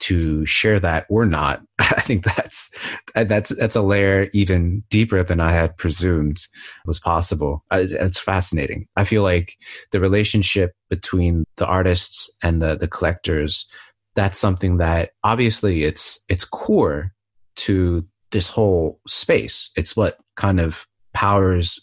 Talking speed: 140 wpm